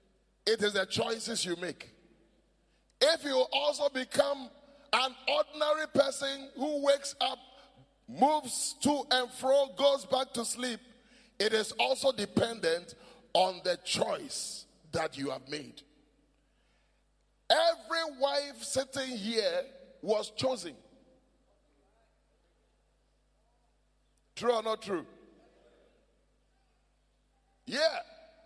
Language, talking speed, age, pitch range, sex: English, 95 wpm, 30-49, 250-310 Hz, male